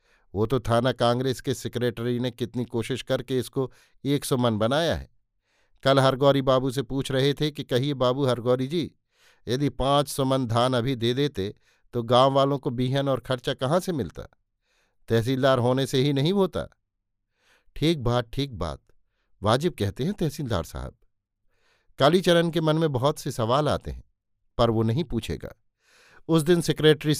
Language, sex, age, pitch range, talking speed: Hindi, male, 50-69, 115-140 Hz, 170 wpm